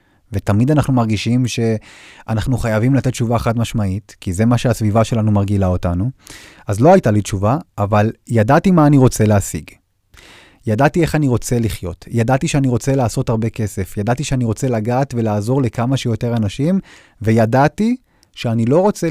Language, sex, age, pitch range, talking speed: Hebrew, male, 30-49, 100-135 Hz, 155 wpm